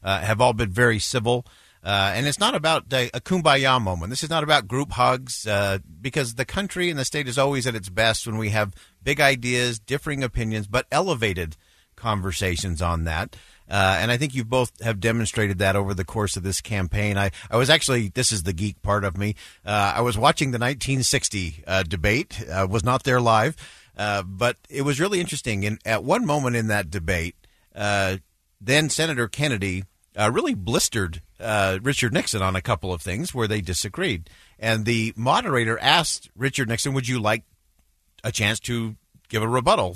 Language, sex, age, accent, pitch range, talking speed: English, male, 50-69, American, 100-130 Hz, 195 wpm